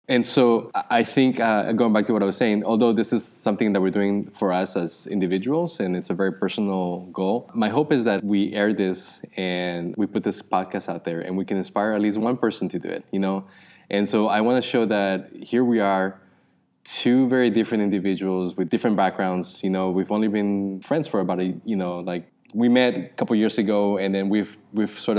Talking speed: 230 wpm